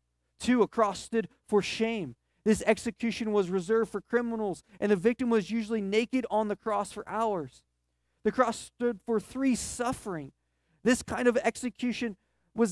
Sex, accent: male, American